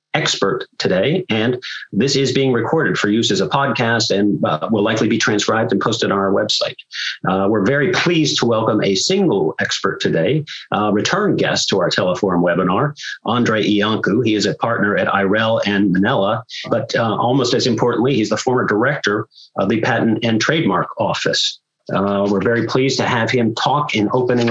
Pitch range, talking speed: 100-120 Hz, 185 wpm